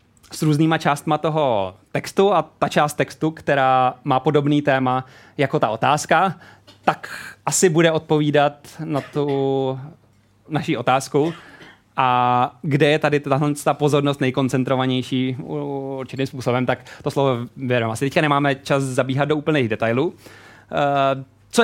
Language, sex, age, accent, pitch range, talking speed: Czech, male, 20-39, native, 125-150 Hz, 130 wpm